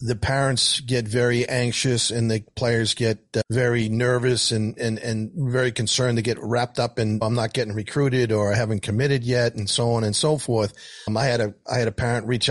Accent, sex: American, male